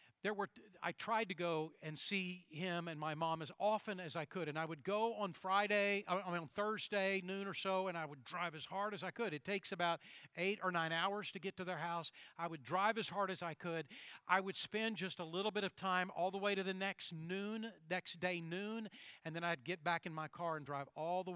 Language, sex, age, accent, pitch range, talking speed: English, male, 40-59, American, 155-190 Hz, 255 wpm